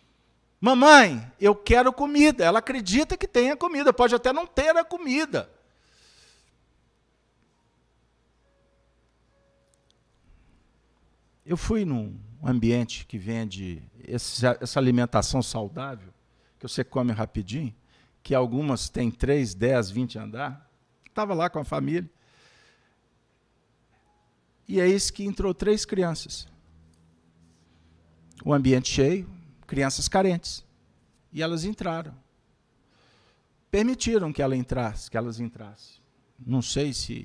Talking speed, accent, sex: 105 wpm, Brazilian, male